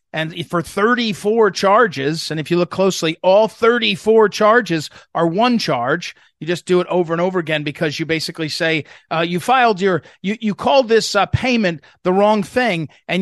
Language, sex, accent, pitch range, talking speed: English, male, American, 170-235 Hz, 185 wpm